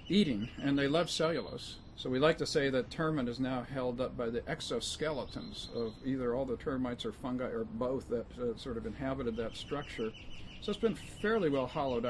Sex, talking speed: male, 205 wpm